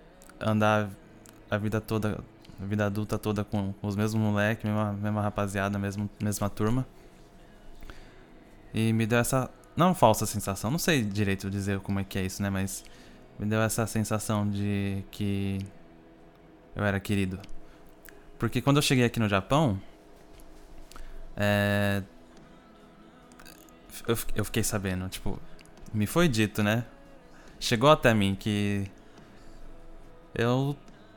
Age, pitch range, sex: 20-39, 100-115 Hz, male